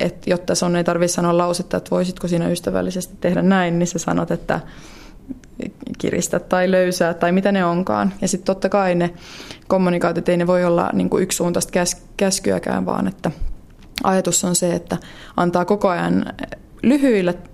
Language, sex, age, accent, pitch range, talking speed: Finnish, female, 20-39, native, 170-195 Hz, 170 wpm